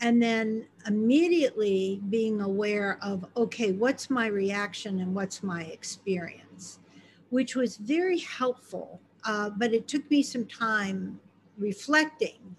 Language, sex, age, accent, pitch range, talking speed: English, female, 50-69, American, 190-235 Hz, 125 wpm